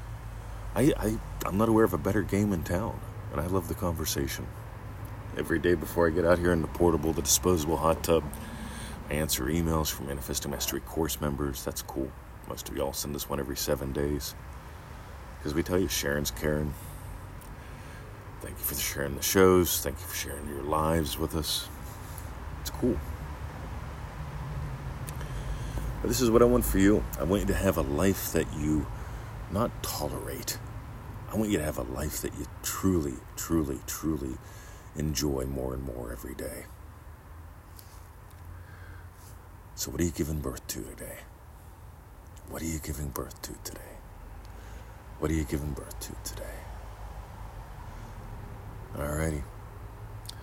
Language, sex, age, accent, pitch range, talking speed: English, male, 40-59, American, 80-105 Hz, 155 wpm